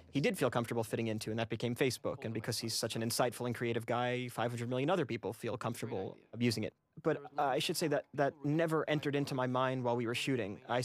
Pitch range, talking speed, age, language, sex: 120-145 Hz, 245 wpm, 30-49, English, male